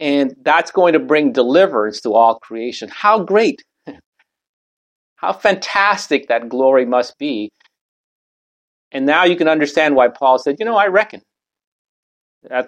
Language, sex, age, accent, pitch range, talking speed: English, male, 40-59, American, 125-165 Hz, 140 wpm